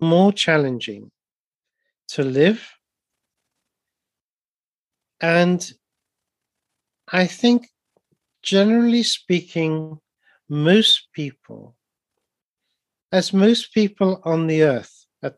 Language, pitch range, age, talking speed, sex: English, 150-185 Hz, 50-69, 70 wpm, male